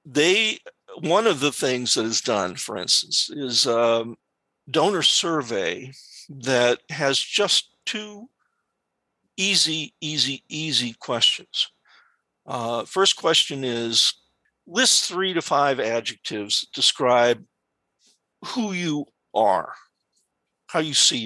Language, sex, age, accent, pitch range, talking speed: English, male, 50-69, American, 120-170 Hz, 115 wpm